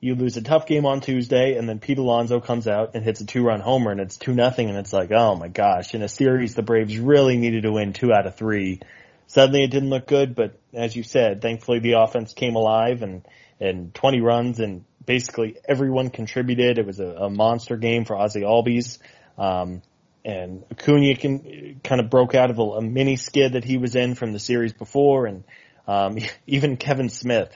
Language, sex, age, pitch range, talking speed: English, male, 20-39, 110-130 Hz, 205 wpm